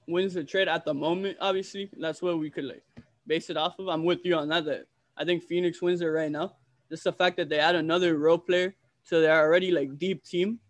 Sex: male